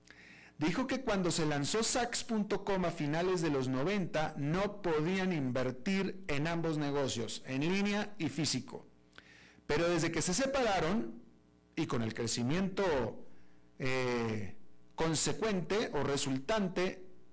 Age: 50-69